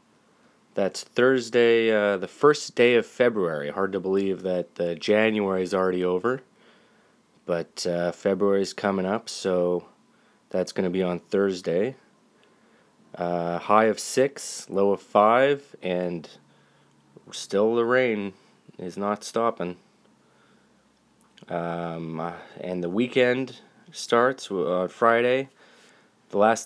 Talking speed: 120 wpm